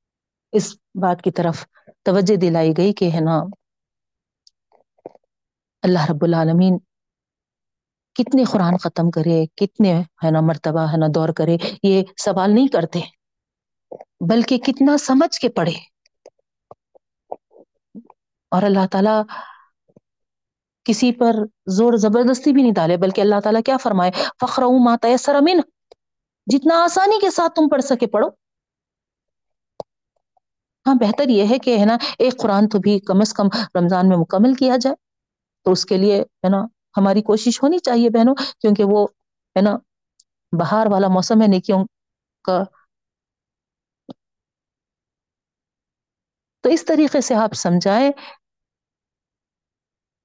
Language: Urdu